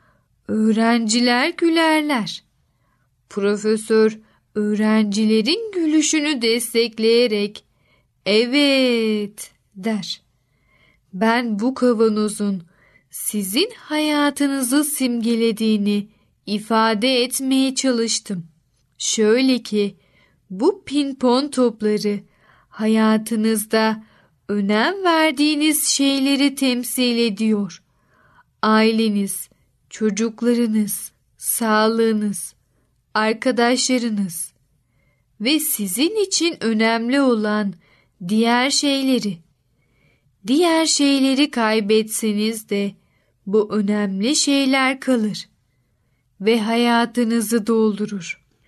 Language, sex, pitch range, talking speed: Turkish, female, 200-255 Hz, 60 wpm